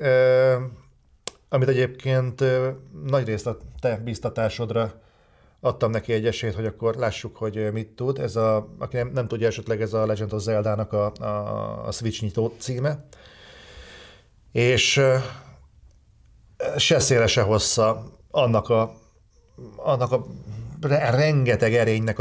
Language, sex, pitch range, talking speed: Hungarian, male, 110-125 Hz, 120 wpm